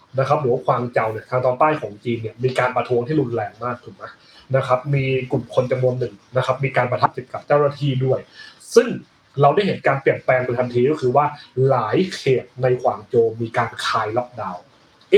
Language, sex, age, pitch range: Thai, male, 30-49, 130-170 Hz